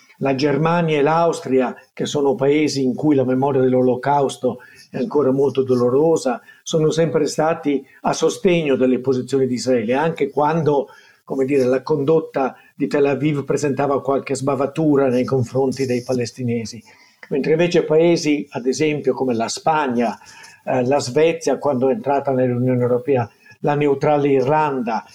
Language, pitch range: Italian, 130-160 Hz